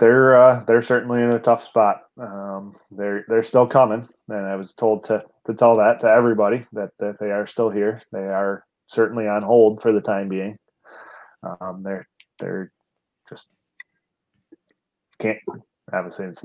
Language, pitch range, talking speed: English, 100-110 Hz, 165 wpm